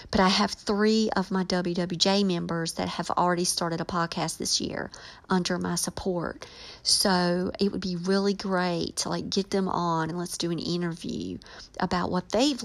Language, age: English, 50-69